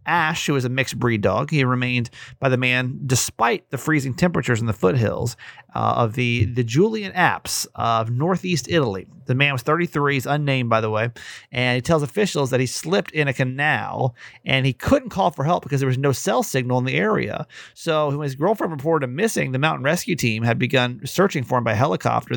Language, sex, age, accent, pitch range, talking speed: English, male, 30-49, American, 120-155 Hz, 215 wpm